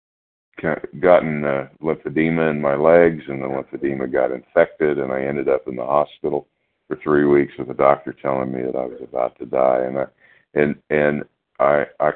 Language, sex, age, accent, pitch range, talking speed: English, male, 50-69, American, 65-75 Hz, 190 wpm